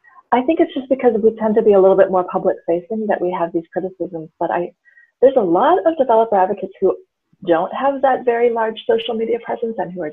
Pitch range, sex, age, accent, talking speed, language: 170-230 Hz, female, 30-49, American, 230 wpm, English